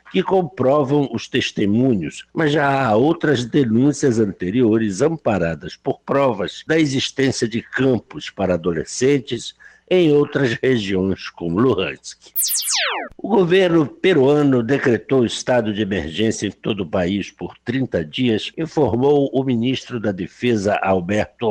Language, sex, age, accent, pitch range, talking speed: Portuguese, male, 60-79, Brazilian, 100-135 Hz, 125 wpm